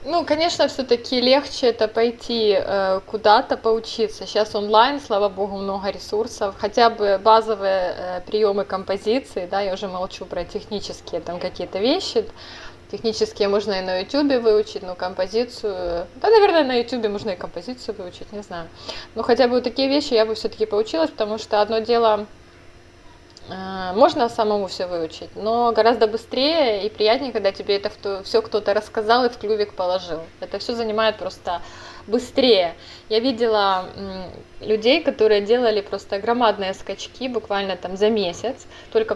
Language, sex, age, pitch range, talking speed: Ukrainian, female, 20-39, 195-235 Hz, 150 wpm